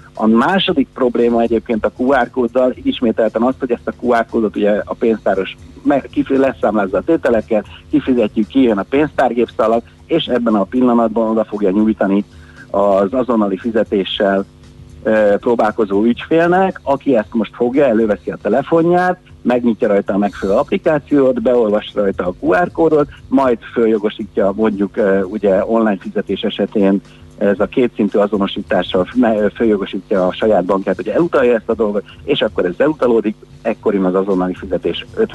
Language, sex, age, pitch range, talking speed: Hungarian, male, 50-69, 100-130 Hz, 140 wpm